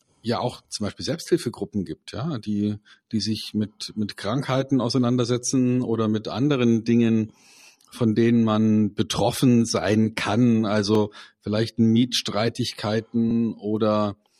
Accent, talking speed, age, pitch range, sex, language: German, 115 wpm, 50-69, 110-130 Hz, male, German